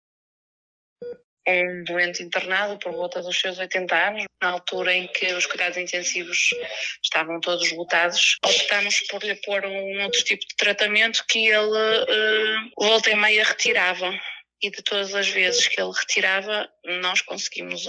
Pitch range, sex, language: 180-210 Hz, female, Portuguese